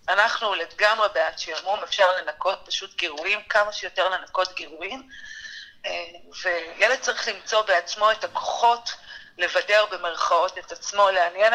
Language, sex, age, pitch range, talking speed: Hebrew, female, 40-59, 180-225 Hz, 120 wpm